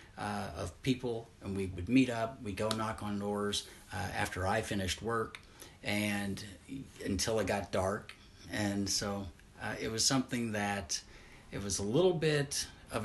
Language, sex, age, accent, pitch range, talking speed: English, male, 40-59, American, 95-115 Hz, 165 wpm